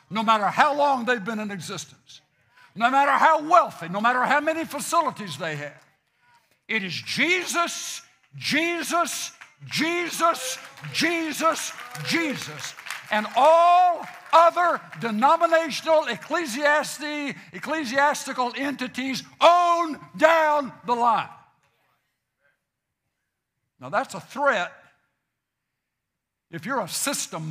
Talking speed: 100 wpm